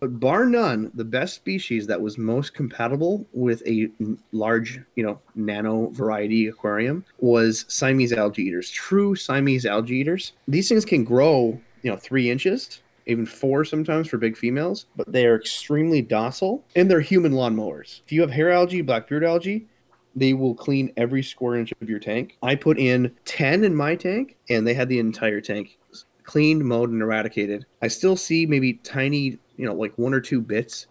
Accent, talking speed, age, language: American, 185 wpm, 30-49, English